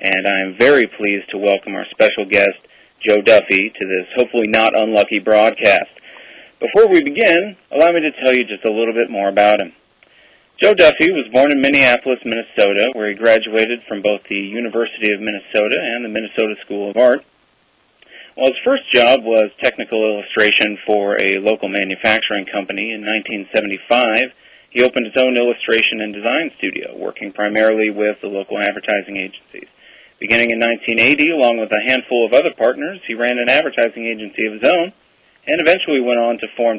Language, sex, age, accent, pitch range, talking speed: English, male, 40-59, American, 105-125 Hz, 175 wpm